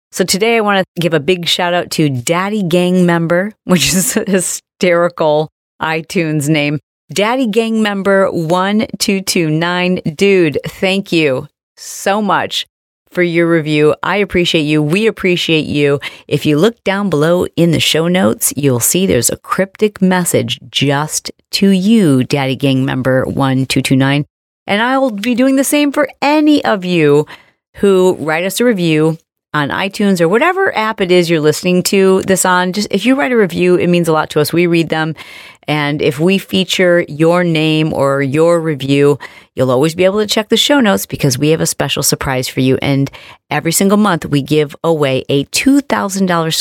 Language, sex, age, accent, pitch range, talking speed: English, female, 40-59, American, 145-195 Hz, 175 wpm